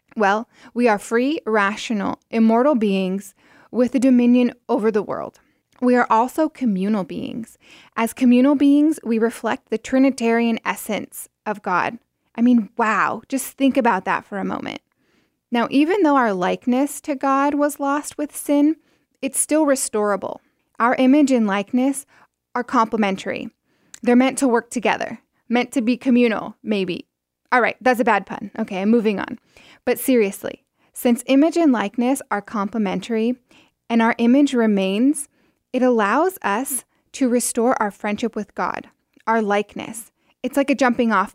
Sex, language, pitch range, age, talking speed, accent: female, English, 220-270 Hz, 10-29, 155 wpm, American